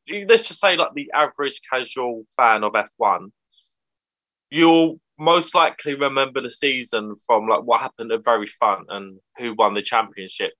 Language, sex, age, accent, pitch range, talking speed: English, male, 20-39, British, 110-155 Hz, 160 wpm